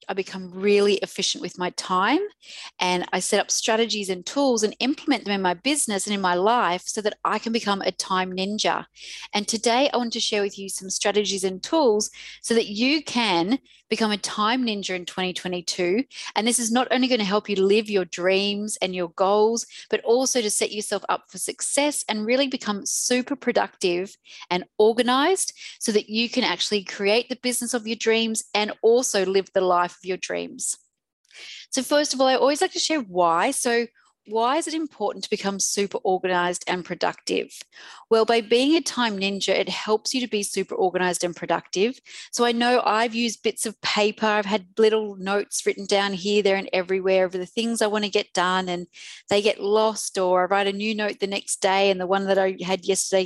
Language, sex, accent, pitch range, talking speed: English, female, Australian, 190-235 Hz, 205 wpm